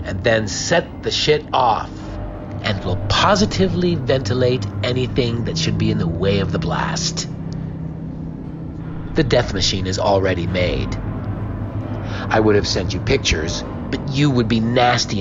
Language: English